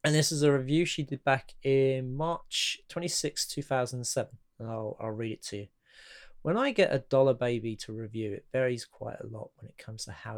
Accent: British